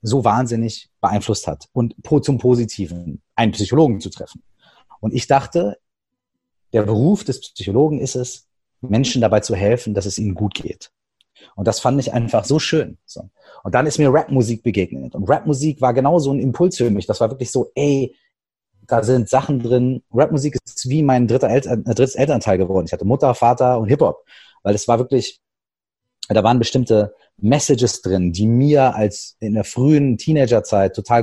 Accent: German